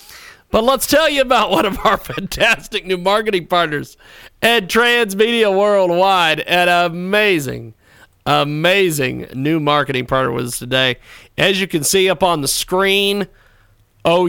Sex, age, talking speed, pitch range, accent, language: male, 40-59, 140 wpm, 110-180 Hz, American, English